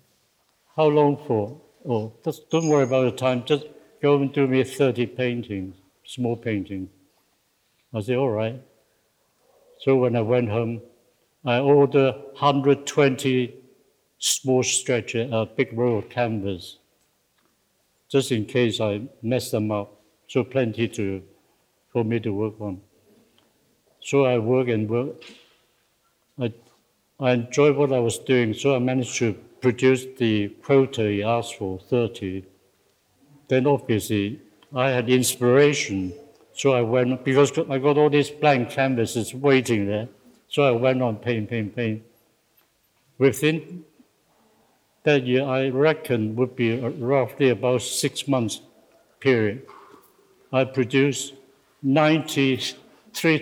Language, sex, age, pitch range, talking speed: English, male, 60-79, 115-135 Hz, 130 wpm